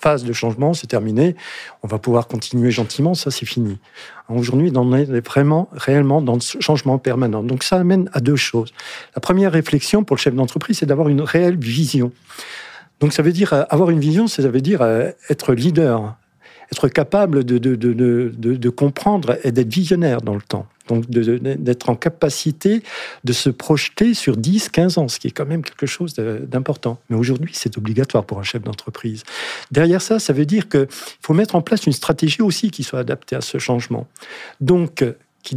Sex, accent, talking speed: male, French, 200 wpm